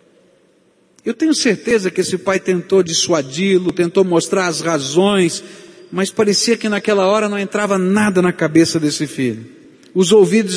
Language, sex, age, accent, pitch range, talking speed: Portuguese, male, 60-79, Brazilian, 135-195 Hz, 155 wpm